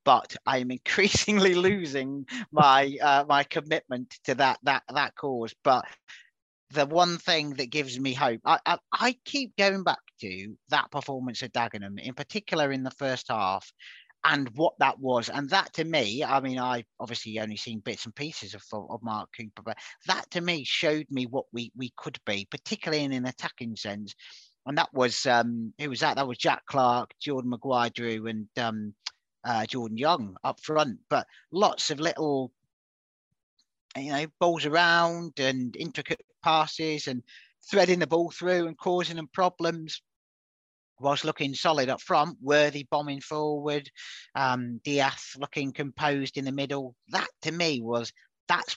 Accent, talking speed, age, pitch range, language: British, 165 wpm, 40-59, 120-155 Hz, English